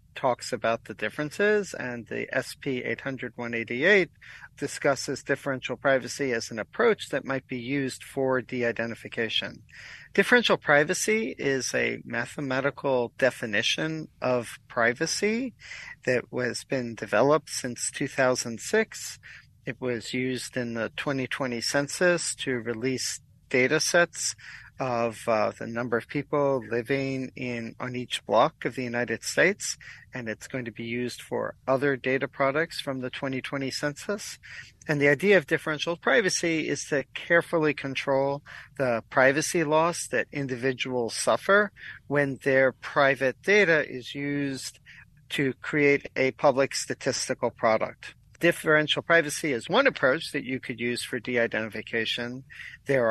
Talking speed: 130 wpm